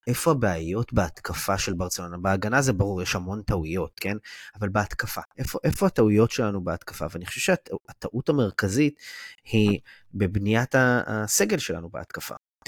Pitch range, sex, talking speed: 100-130 Hz, male, 135 wpm